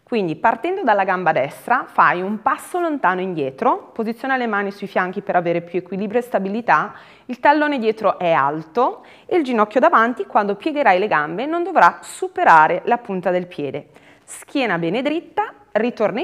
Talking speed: 165 wpm